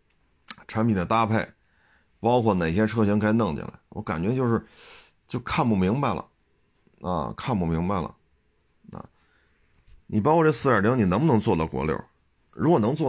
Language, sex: Chinese, male